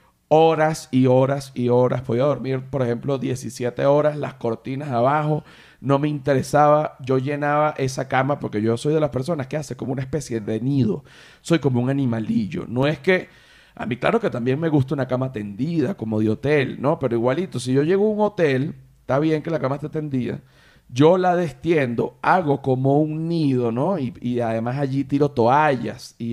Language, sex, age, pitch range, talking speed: Spanish, male, 40-59, 125-155 Hz, 195 wpm